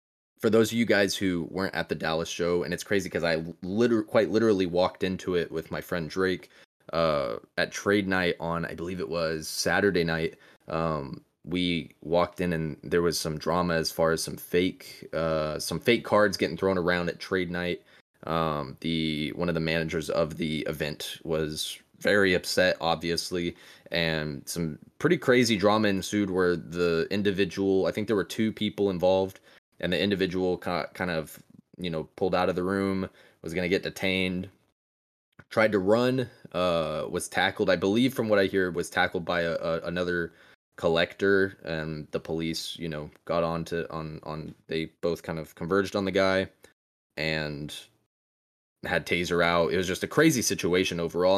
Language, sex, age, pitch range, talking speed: English, male, 20-39, 80-95 Hz, 180 wpm